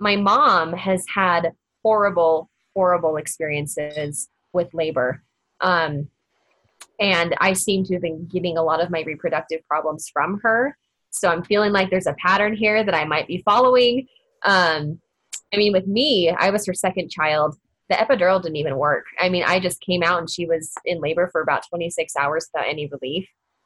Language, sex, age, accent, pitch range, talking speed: English, female, 20-39, American, 160-195 Hz, 180 wpm